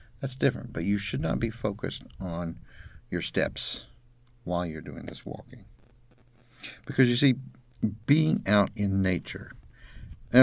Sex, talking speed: male, 140 wpm